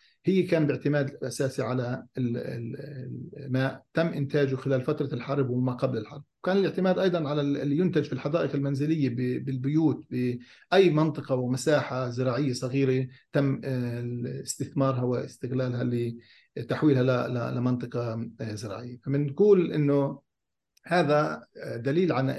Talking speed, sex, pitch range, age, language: 105 wpm, male, 125-145 Hz, 50-69, English